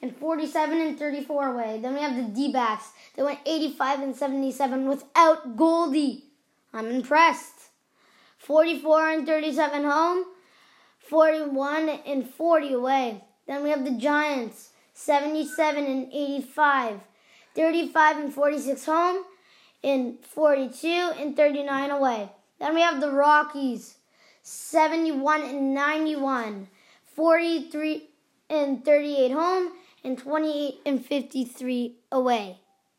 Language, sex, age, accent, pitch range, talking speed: English, female, 20-39, American, 260-310 Hz, 115 wpm